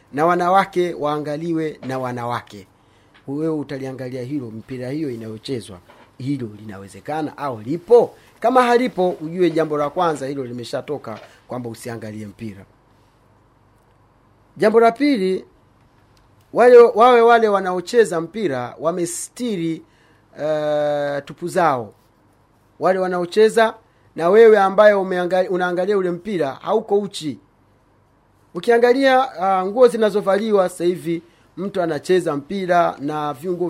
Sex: male